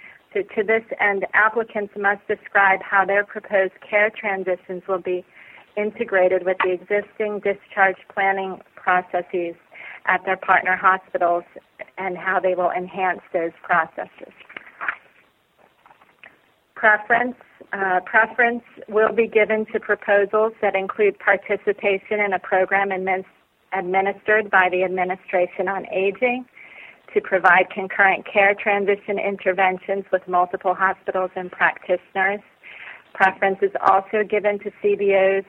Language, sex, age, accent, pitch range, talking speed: English, female, 40-59, American, 185-205 Hz, 115 wpm